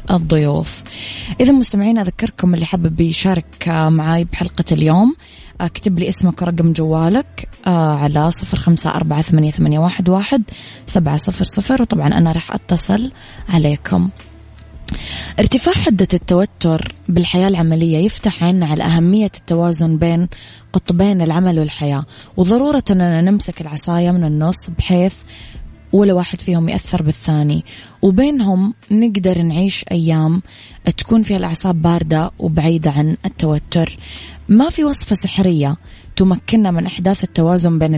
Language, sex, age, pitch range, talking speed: Arabic, female, 20-39, 160-195 Hz, 110 wpm